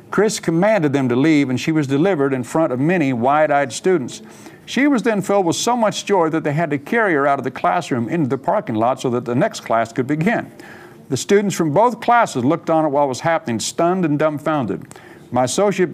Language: English